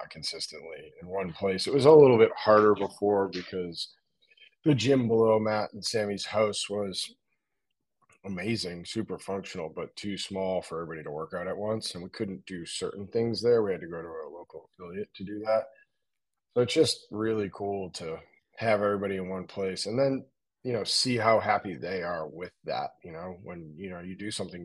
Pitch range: 90-115 Hz